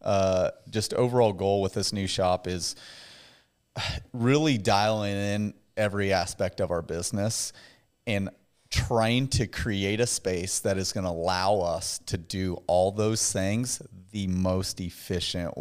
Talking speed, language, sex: 140 wpm, English, male